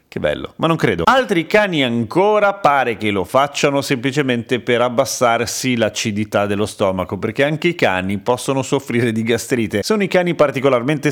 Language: Italian